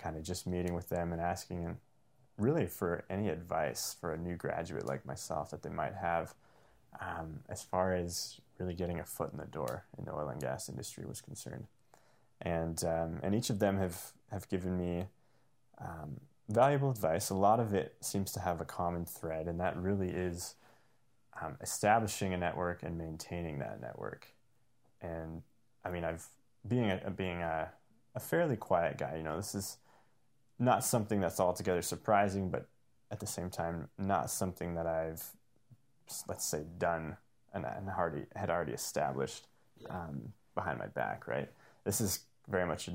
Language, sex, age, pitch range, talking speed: English, male, 20-39, 85-100 Hz, 175 wpm